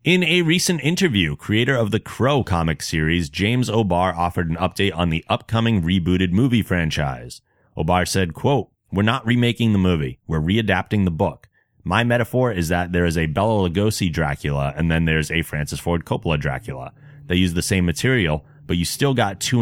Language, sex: English, male